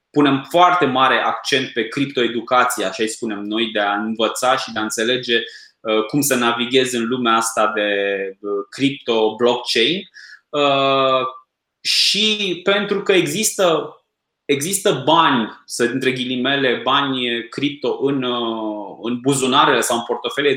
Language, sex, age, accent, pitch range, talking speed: Romanian, male, 20-39, native, 125-180 Hz, 125 wpm